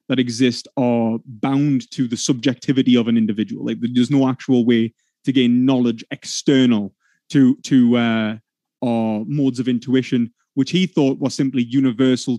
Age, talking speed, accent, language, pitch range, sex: 20-39, 155 wpm, British, English, 120-140 Hz, male